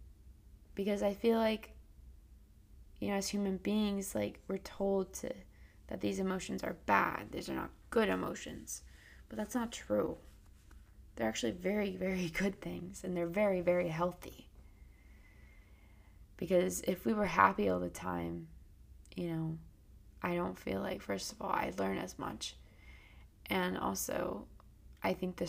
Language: English